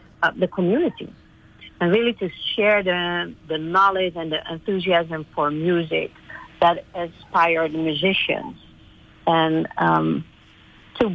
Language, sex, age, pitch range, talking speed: English, female, 50-69, 155-185 Hz, 115 wpm